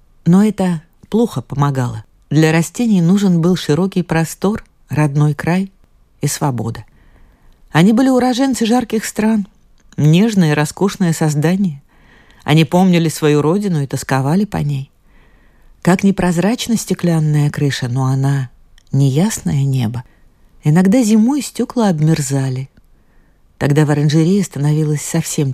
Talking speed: 115 wpm